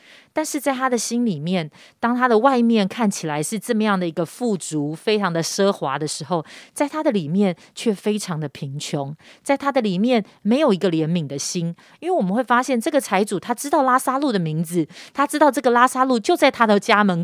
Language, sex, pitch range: Chinese, female, 175-255 Hz